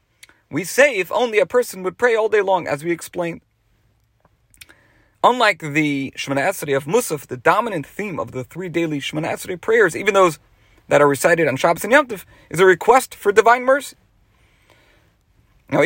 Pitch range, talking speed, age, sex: 130-180 Hz, 170 wpm, 40-59, male